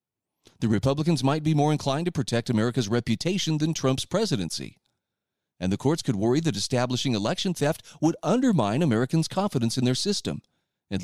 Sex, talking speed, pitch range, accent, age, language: male, 165 wpm, 120-165 Hz, American, 40-59, English